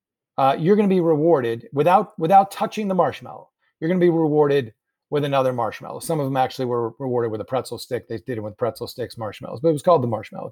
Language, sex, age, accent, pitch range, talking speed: English, male, 40-59, American, 130-165 Hz, 240 wpm